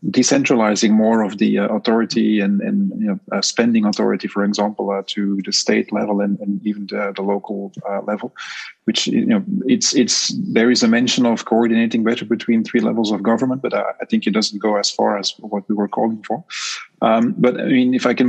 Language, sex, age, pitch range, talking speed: English, male, 30-49, 105-120 Hz, 225 wpm